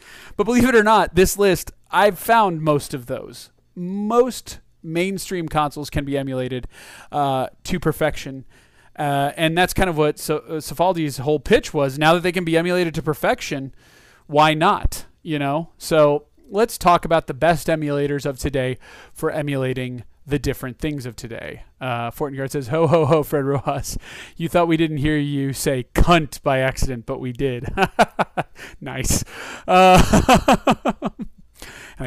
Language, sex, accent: English, male, American